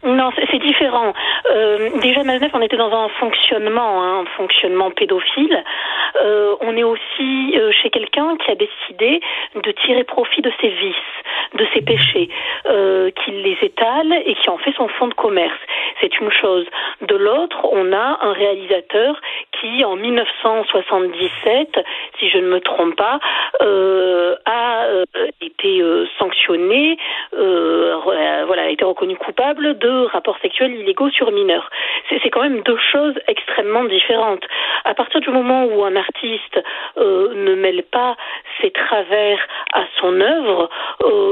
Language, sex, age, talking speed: French, female, 40-59, 155 wpm